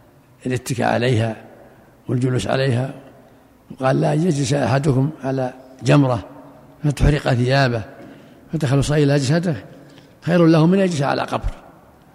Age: 60-79